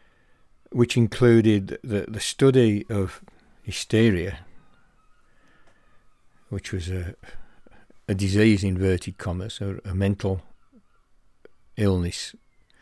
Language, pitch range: English, 95-110 Hz